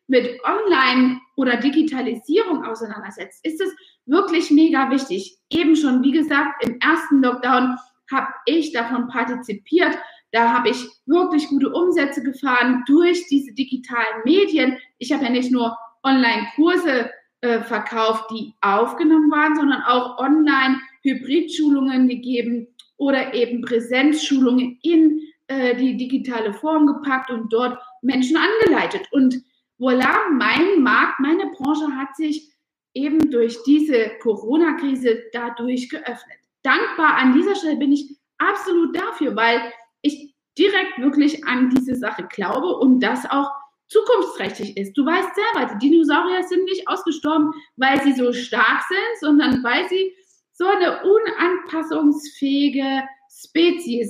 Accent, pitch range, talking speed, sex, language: German, 250-320 Hz, 130 wpm, female, German